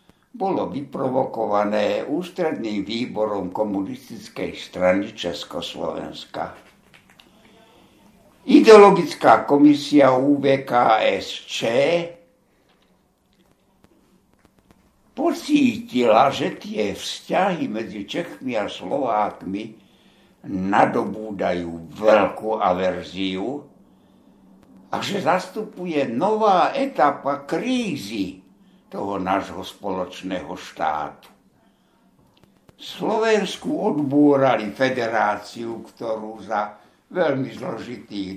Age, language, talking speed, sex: 60-79, Slovak, 60 wpm, male